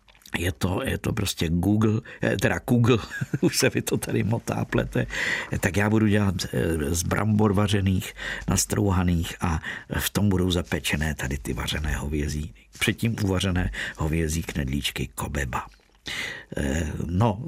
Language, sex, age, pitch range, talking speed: Czech, male, 50-69, 95-115 Hz, 125 wpm